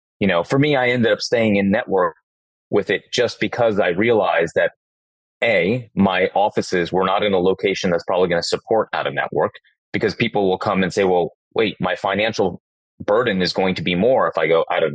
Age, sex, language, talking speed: 30-49, male, English, 215 wpm